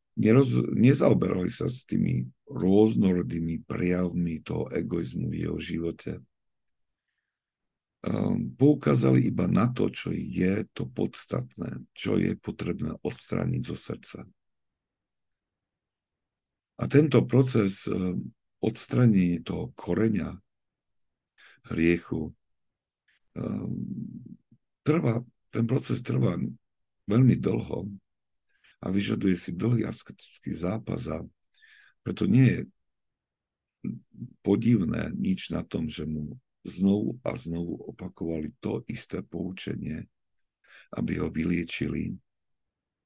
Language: Slovak